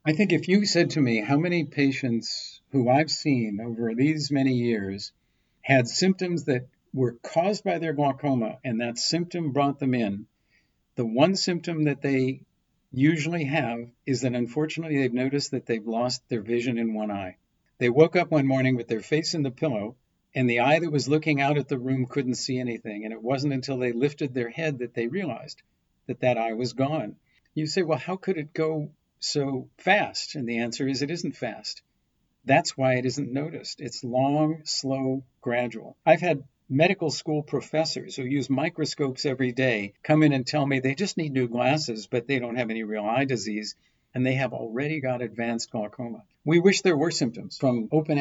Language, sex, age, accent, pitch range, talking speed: English, male, 50-69, American, 120-155 Hz, 195 wpm